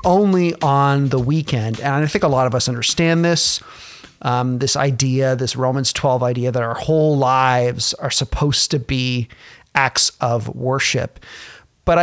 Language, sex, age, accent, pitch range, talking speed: English, male, 30-49, American, 130-155 Hz, 160 wpm